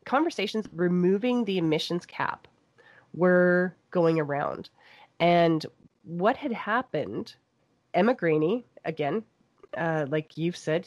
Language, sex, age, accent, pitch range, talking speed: English, female, 30-49, American, 155-180 Hz, 105 wpm